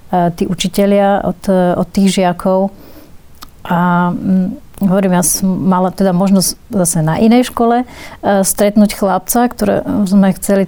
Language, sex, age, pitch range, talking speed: Slovak, female, 30-49, 180-200 Hz, 135 wpm